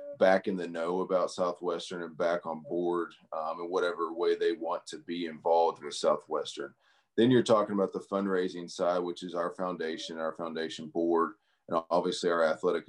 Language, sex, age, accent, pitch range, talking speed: English, male, 40-59, American, 80-95 Hz, 180 wpm